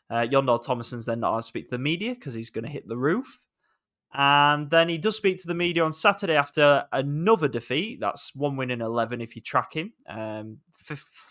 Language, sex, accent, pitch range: English, male, British, 115-150 Hz